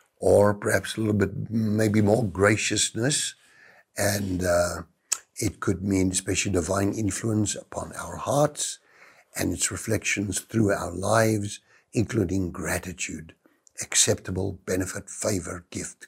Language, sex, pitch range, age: English, male, 95-145 Hz, 60-79